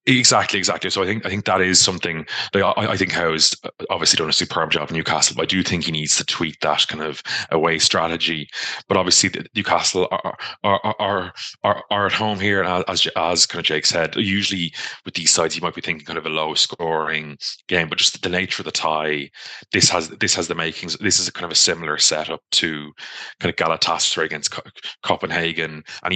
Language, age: English, 20-39